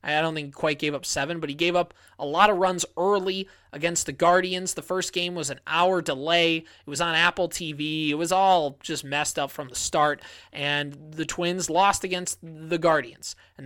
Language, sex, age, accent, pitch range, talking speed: English, male, 20-39, American, 145-185 Hz, 215 wpm